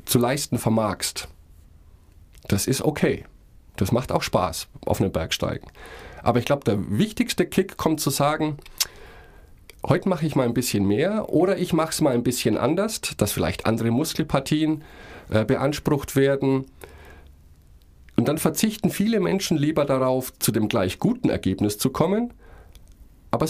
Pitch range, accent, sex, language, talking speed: 105-155 Hz, German, male, German, 150 wpm